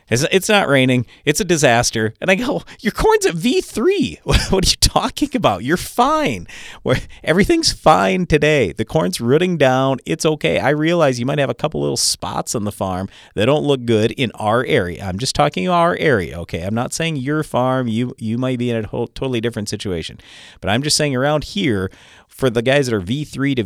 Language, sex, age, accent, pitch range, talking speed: English, male, 40-59, American, 105-150 Hz, 210 wpm